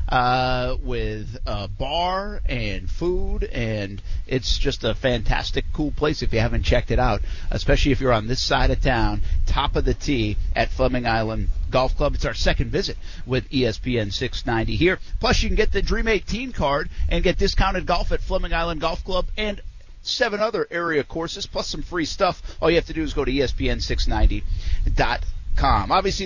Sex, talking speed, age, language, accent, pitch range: male, 185 wpm, 50-69, English, American, 100-160 Hz